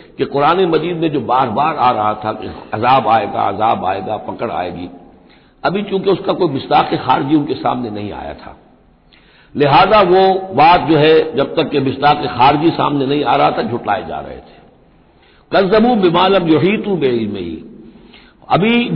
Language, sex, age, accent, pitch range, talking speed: Hindi, male, 60-79, native, 135-200 Hz, 160 wpm